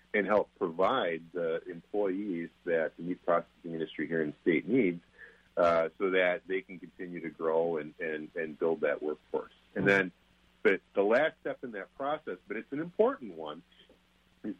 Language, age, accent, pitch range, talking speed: English, 50-69, American, 80-115 Hz, 180 wpm